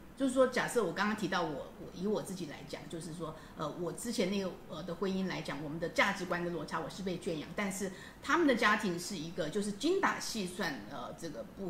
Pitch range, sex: 170-220 Hz, female